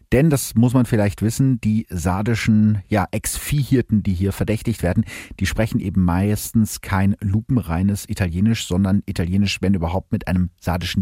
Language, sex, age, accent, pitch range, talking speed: German, male, 40-59, German, 90-115 Hz, 145 wpm